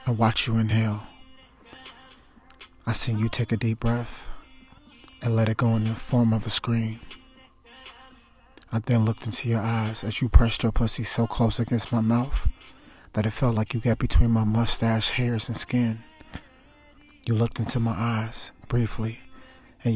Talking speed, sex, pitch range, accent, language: 170 wpm, male, 110-120 Hz, American, English